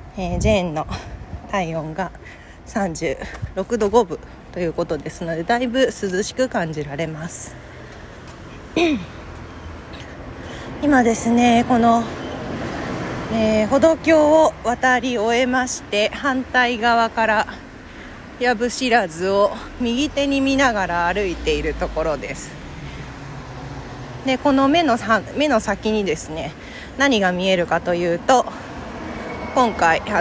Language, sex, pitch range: Japanese, female, 175-270 Hz